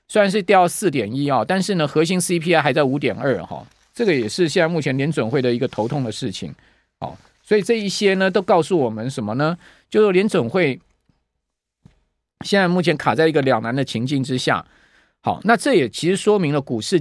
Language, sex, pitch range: Chinese, male, 130-180 Hz